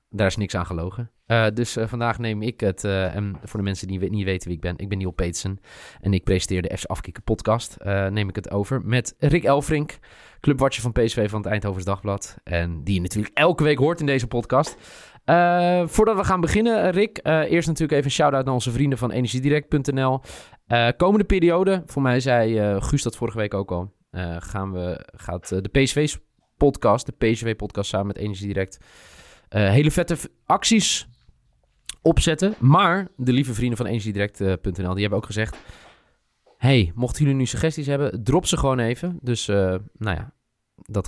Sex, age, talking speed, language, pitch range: male, 20-39, 195 wpm, Dutch, 95-135 Hz